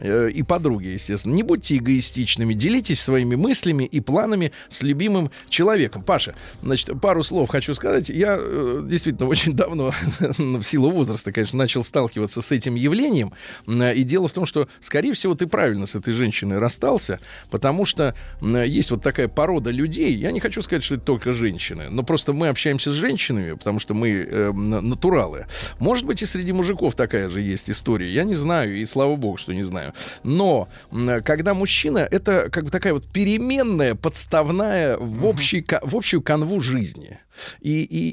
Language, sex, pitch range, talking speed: Russian, male, 115-170 Hz, 170 wpm